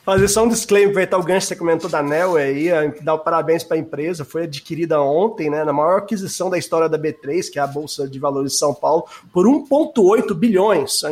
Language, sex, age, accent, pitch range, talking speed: Portuguese, male, 20-39, Brazilian, 155-225 Hz, 230 wpm